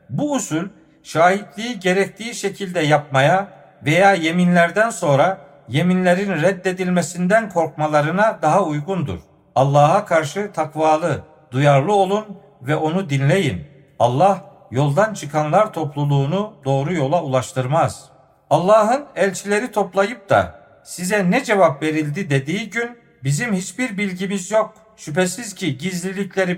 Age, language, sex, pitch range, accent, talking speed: 50-69, Turkish, male, 150-195 Hz, native, 105 wpm